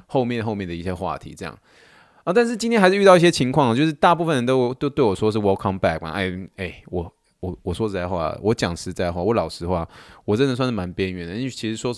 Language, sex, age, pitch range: Chinese, male, 20-39, 90-135 Hz